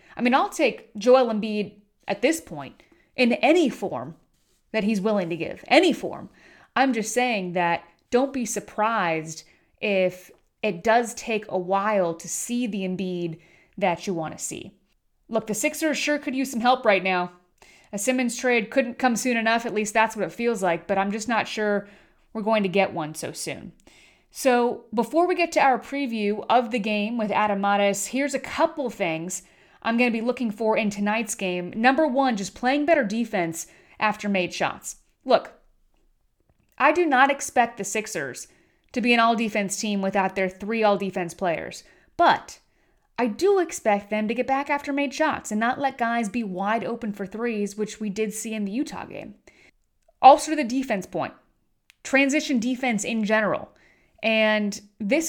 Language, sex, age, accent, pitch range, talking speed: English, female, 30-49, American, 200-255 Hz, 180 wpm